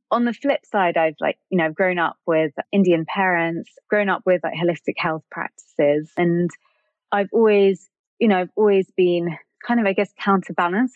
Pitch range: 160-195 Hz